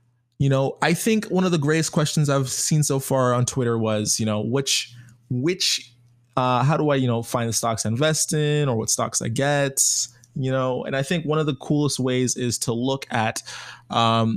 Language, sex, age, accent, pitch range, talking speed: English, male, 20-39, American, 120-145 Hz, 215 wpm